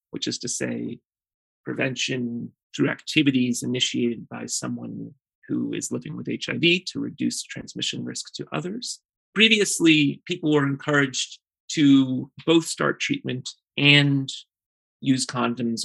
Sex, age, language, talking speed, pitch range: male, 30-49, English, 120 wpm, 130-165 Hz